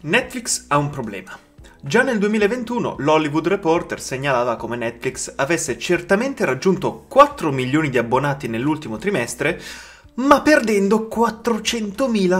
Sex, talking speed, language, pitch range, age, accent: male, 115 wpm, Italian, 130-195 Hz, 30-49, native